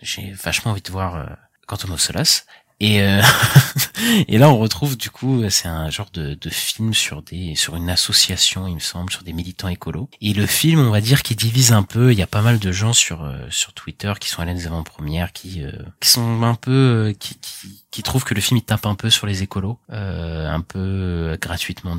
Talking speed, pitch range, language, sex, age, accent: 230 wpm, 85-110 Hz, French, male, 30-49, French